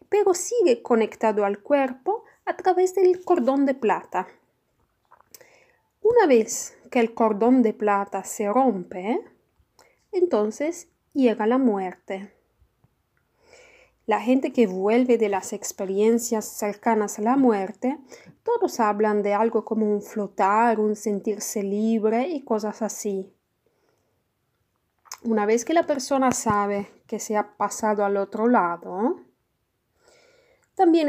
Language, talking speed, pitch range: Spanish, 120 wpm, 210-315 Hz